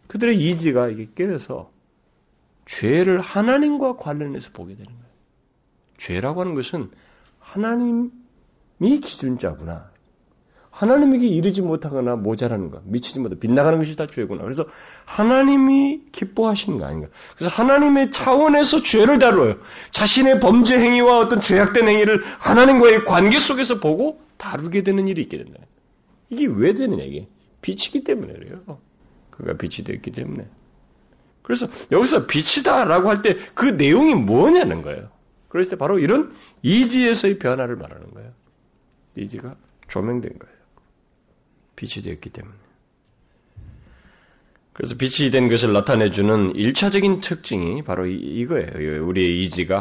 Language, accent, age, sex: Korean, native, 40-59, male